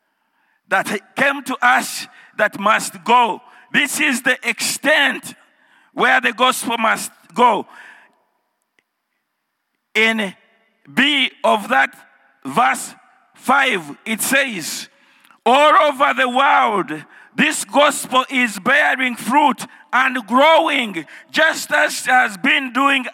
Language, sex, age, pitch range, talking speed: English, male, 50-69, 230-285 Hz, 105 wpm